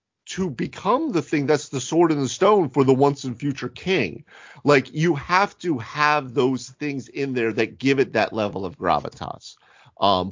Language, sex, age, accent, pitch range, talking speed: English, male, 40-59, American, 115-145 Hz, 190 wpm